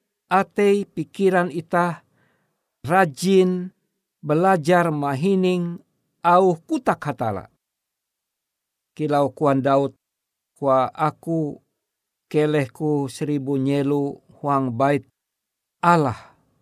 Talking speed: 70 wpm